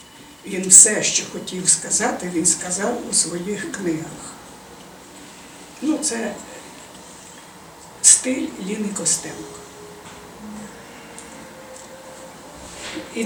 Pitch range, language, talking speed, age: 170-220 Hz, Ukrainian, 70 wpm, 60-79